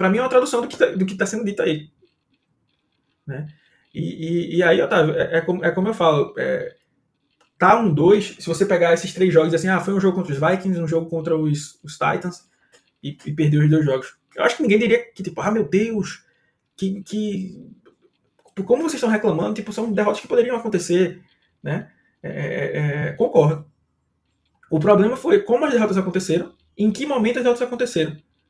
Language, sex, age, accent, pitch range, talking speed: Portuguese, male, 20-39, Brazilian, 155-215 Hz, 205 wpm